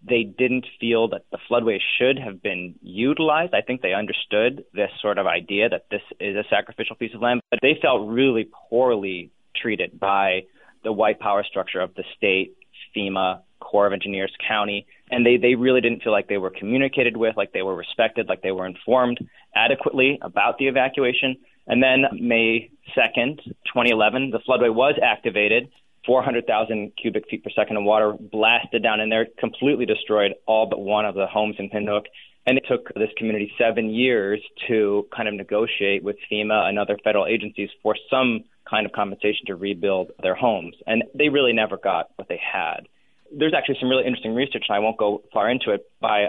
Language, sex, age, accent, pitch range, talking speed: English, male, 20-39, American, 100-120 Hz, 190 wpm